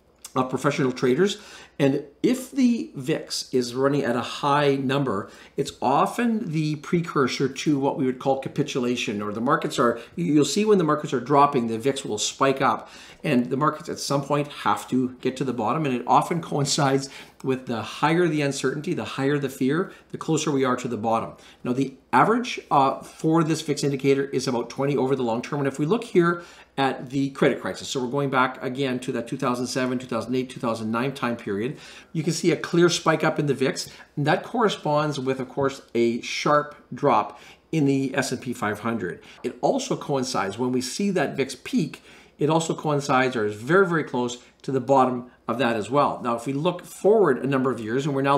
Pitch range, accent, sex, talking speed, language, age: 125-155 Hz, American, male, 205 wpm, English, 40-59